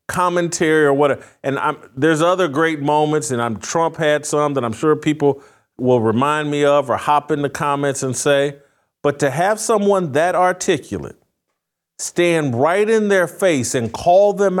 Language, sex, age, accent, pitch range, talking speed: English, male, 40-59, American, 140-180 Hz, 175 wpm